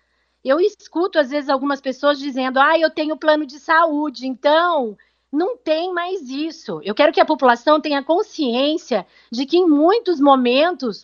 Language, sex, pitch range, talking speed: Portuguese, female, 260-320 Hz, 165 wpm